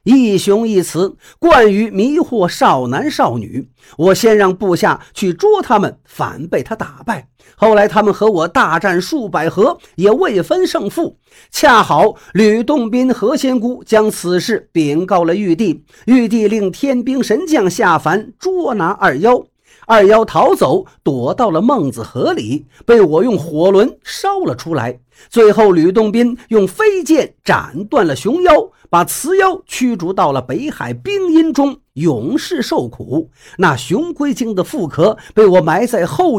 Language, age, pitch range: Chinese, 50-69, 190-295 Hz